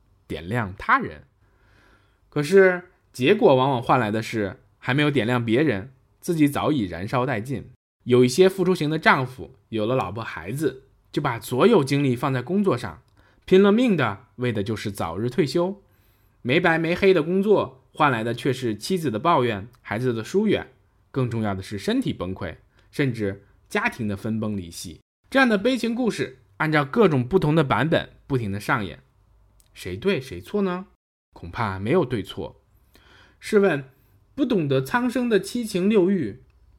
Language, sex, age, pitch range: Chinese, male, 20-39, 105-175 Hz